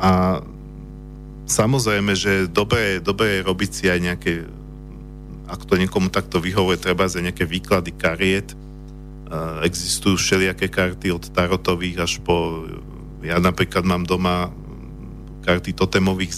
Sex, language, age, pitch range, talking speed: male, Slovak, 50-69, 80-95 Hz, 115 wpm